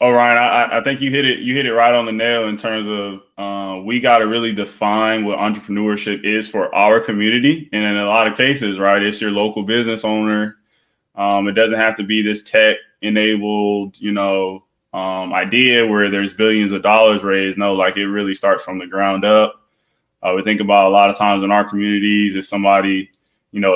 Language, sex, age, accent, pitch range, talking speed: English, male, 20-39, American, 100-110 Hz, 210 wpm